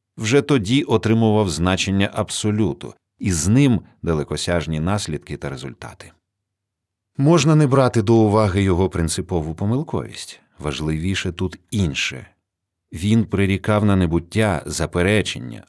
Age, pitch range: 40-59, 85-110 Hz